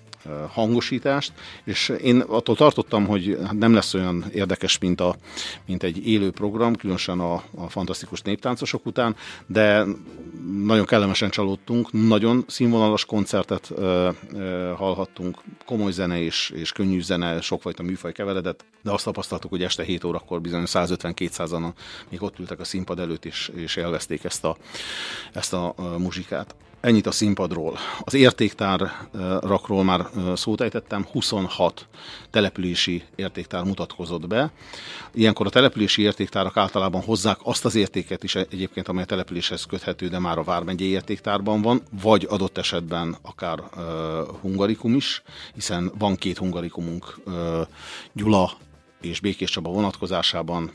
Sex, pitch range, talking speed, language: male, 90-105 Hz, 140 wpm, Hungarian